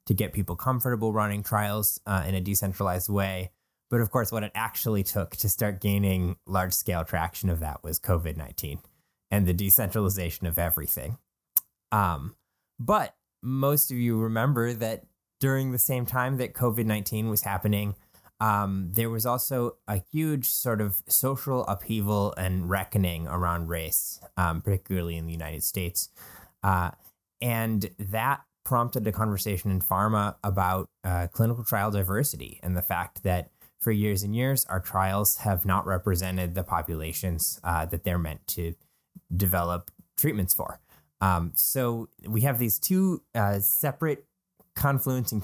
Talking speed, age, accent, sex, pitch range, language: 150 wpm, 20-39, American, male, 90-115 Hz, English